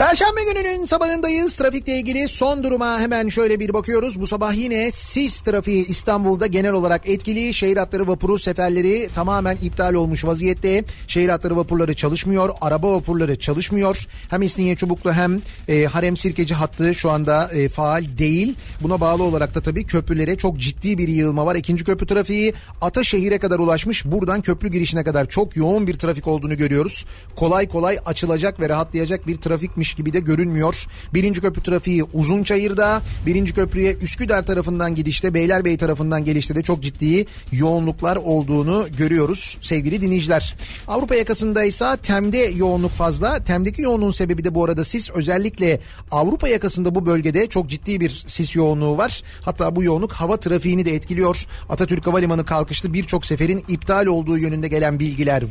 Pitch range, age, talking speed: 160-200 Hz, 40-59, 155 wpm